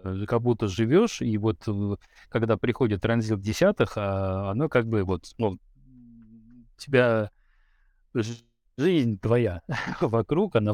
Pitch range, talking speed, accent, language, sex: 100-120 Hz, 105 wpm, native, Russian, male